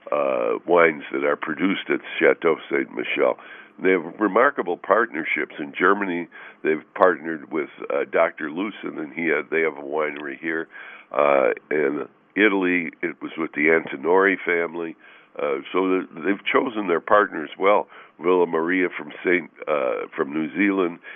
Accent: American